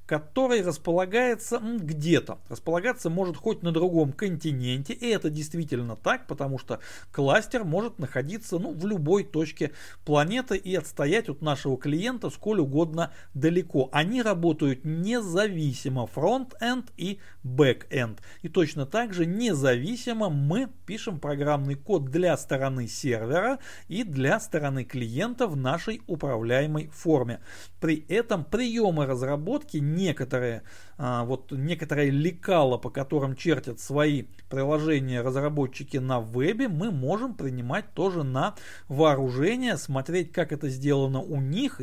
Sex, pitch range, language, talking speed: male, 135-185 Hz, Russian, 120 wpm